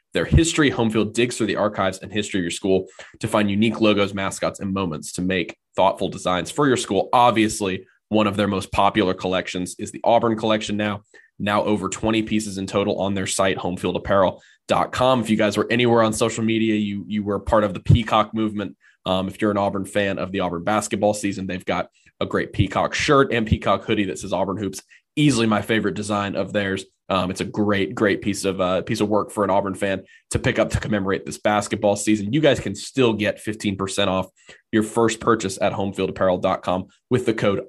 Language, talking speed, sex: English, 210 wpm, male